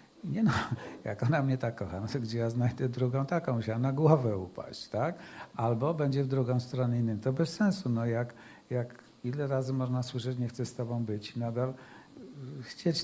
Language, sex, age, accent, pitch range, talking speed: Polish, male, 50-69, native, 125-165 Hz, 200 wpm